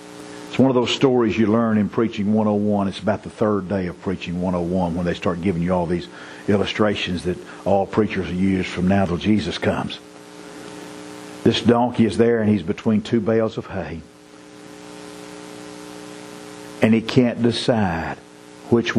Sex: male